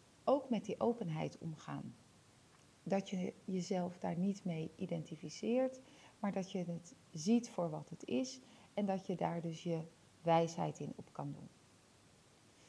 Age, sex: 40-59, female